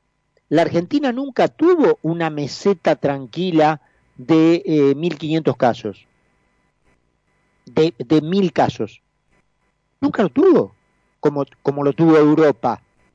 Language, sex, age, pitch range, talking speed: Spanish, male, 50-69, 130-170 Hz, 105 wpm